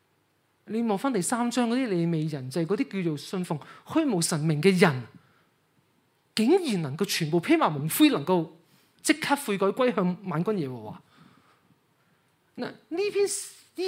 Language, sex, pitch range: Chinese, male, 170-260 Hz